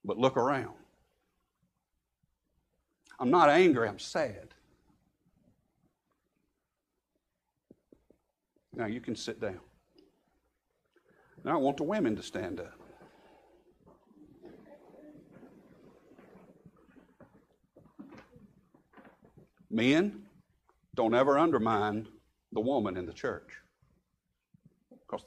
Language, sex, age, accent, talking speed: English, male, 60-79, American, 75 wpm